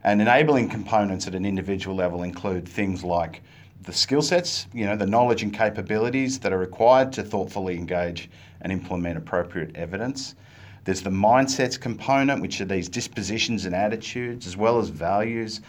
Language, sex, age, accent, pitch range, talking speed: English, male, 40-59, Australian, 95-120 Hz, 165 wpm